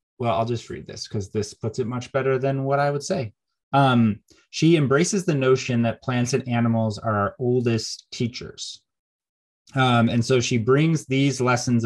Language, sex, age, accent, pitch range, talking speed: English, male, 30-49, American, 105-125 Hz, 180 wpm